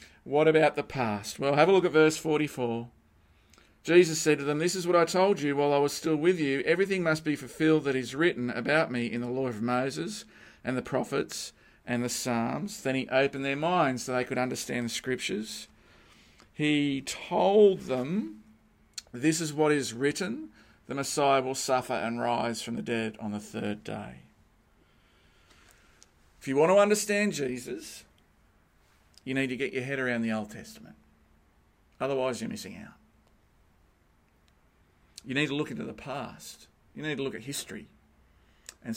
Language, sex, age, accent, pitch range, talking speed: English, male, 40-59, Australian, 105-145 Hz, 175 wpm